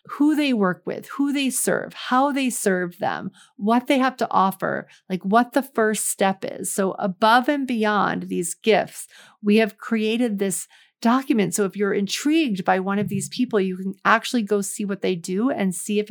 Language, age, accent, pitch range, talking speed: English, 40-59, American, 195-250 Hz, 200 wpm